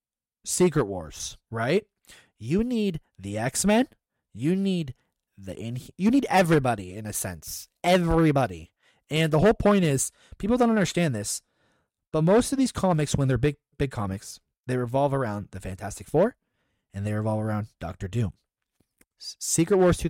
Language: English